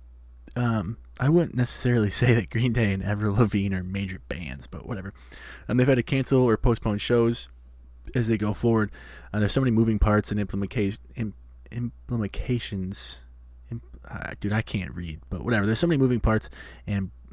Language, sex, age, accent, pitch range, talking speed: English, male, 20-39, American, 90-115 Hz, 175 wpm